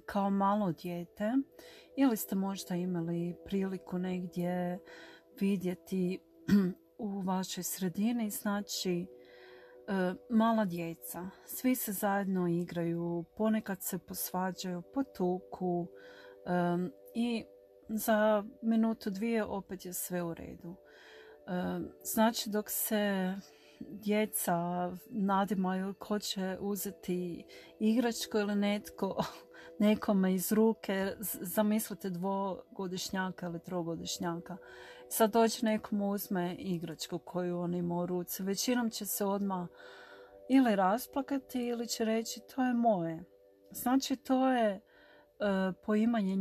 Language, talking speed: Croatian, 100 wpm